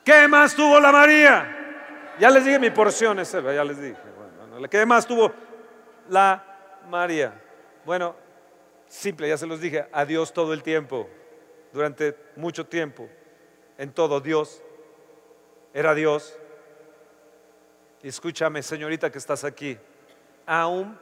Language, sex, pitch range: Spanish, male, 130-175 Hz